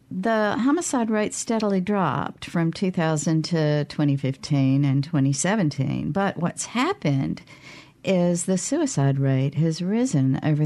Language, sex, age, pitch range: English, female, 50-69, 140-185 Hz